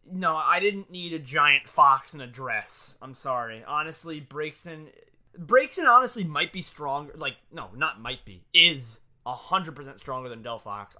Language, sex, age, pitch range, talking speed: English, male, 20-39, 115-160 Hz, 165 wpm